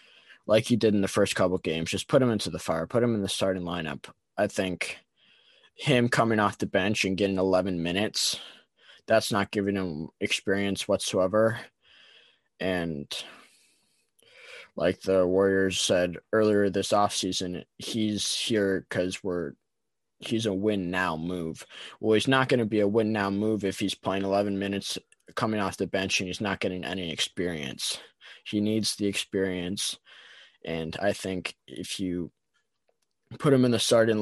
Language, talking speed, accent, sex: English, 165 wpm, American, male